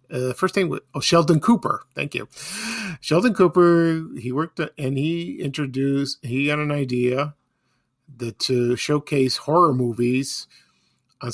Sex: male